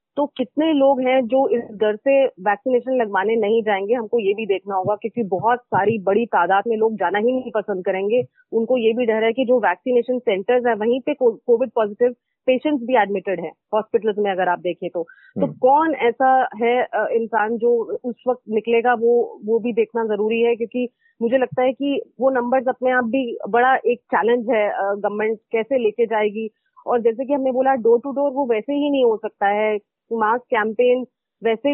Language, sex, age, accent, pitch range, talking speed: Hindi, female, 30-49, native, 210-255 Hz, 195 wpm